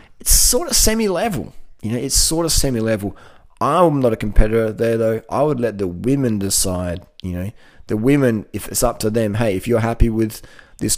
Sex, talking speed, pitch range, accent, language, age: male, 200 wpm, 110-145 Hz, Australian, English, 30-49